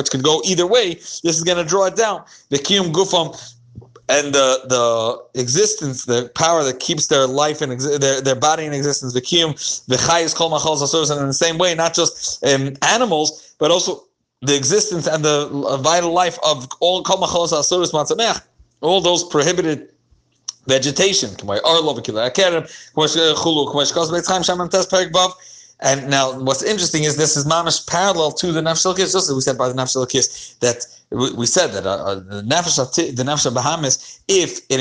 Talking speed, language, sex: 165 wpm, English, male